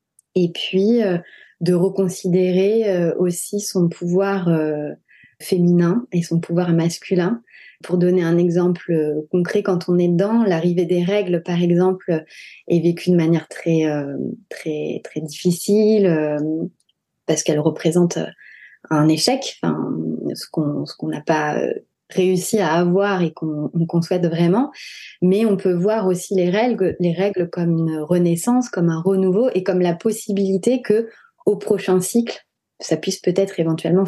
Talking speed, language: 150 wpm, French